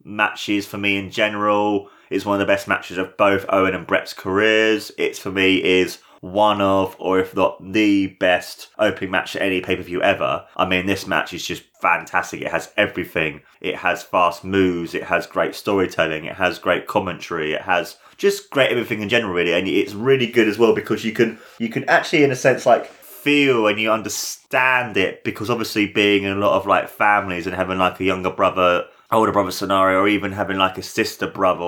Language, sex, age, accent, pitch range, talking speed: English, male, 20-39, British, 95-105 Hz, 210 wpm